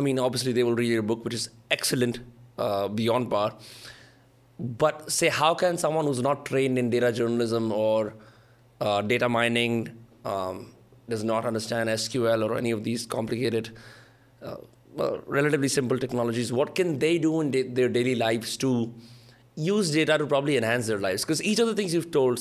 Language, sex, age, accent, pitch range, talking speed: Hindi, male, 20-39, native, 115-130 Hz, 180 wpm